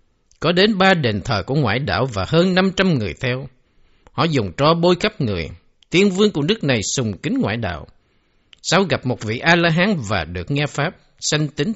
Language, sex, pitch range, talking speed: Vietnamese, male, 115-185 Hz, 200 wpm